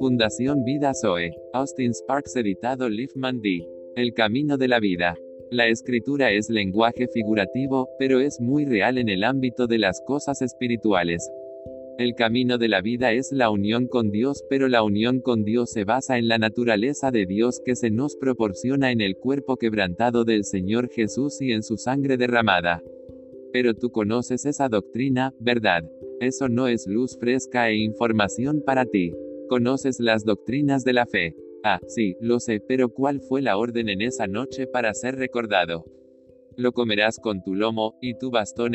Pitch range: 110-130 Hz